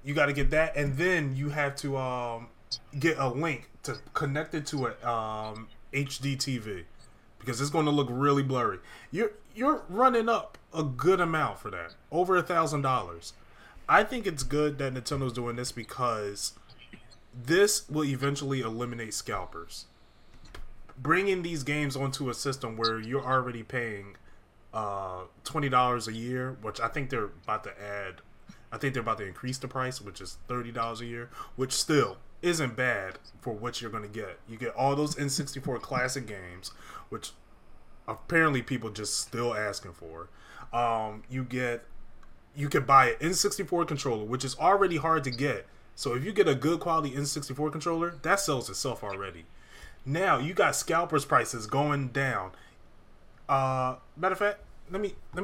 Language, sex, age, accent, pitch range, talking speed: English, male, 20-39, American, 115-150 Hz, 165 wpm